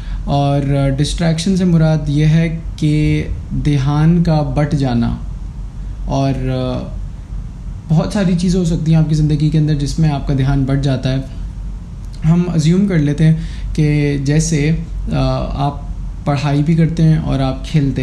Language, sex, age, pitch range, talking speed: Urdu, male, 20-39, 140-160 Hz, 155 wpm